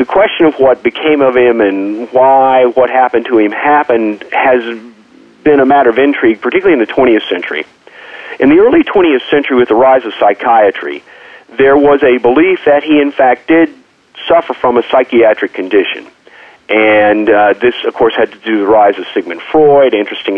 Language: English